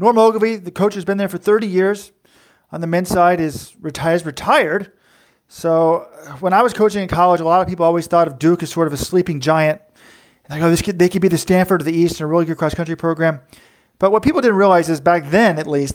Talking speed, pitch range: 255 wpm, 155-190 Hz